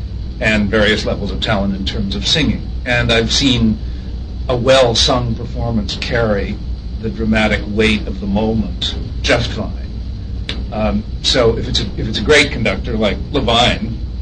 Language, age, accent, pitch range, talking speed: English, 50-69, American, 80-115 Hz, 150 wpm